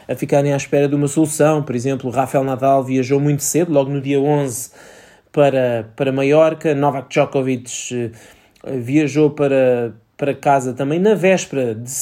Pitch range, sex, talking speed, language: 125-145 Hz, male, 155 wpm, Portuguese